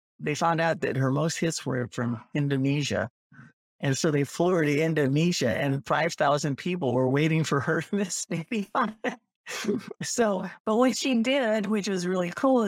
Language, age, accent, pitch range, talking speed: English, 50-69, American, 140-185 Hz, 165 wpm